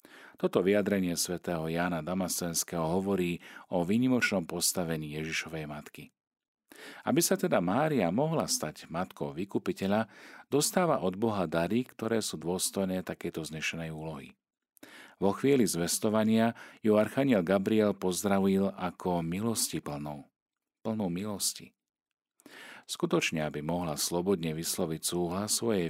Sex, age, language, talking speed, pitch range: male, 40-59, Slovak, 110 wpm, 85-105 Hz